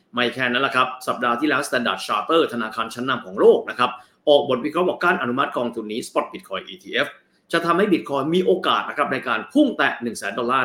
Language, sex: Thai, male